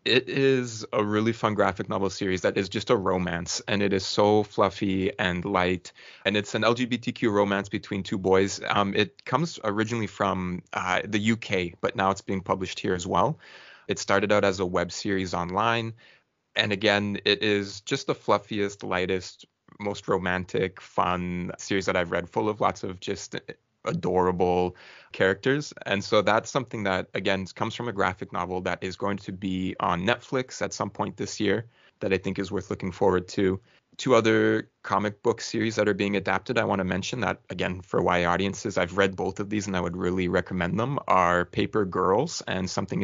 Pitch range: 95-105 Hz